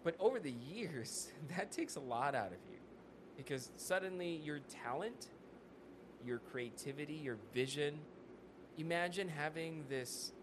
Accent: American